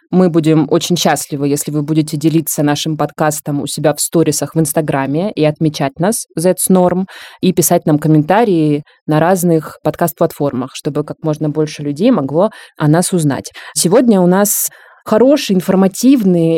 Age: 20-39